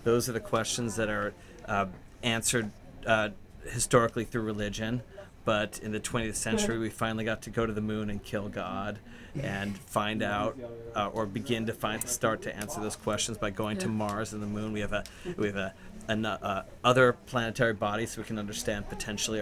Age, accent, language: 30-49, American, English